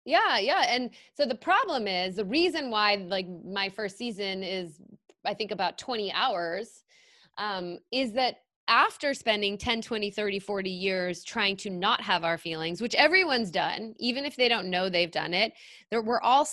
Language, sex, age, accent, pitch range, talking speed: English, female, 20-39, American, 180-235 Hz, 180 wpm